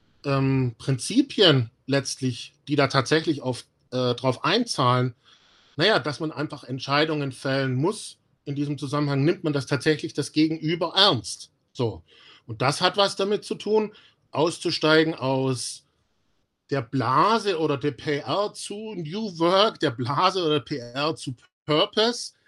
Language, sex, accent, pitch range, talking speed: German, male, German, 135-175 Hz, 140 wpm